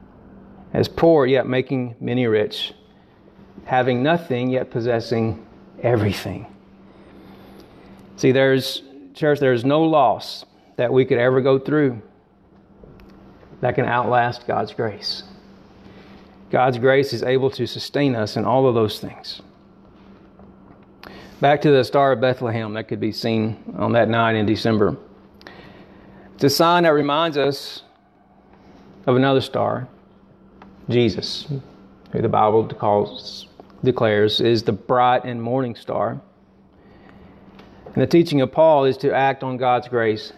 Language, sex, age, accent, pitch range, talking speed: Bengali, male, 40-59, American, 115-140 Hz, 125 wpm